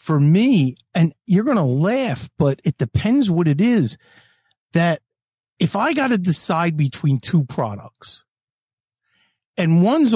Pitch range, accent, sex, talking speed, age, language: 150-200 Hz, American, male, 140 wpm, 50-69, English